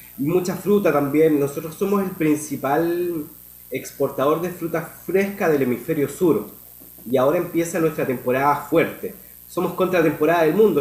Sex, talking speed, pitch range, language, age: male, 145 wpm, 130-160 Hz, Spanish, 30-49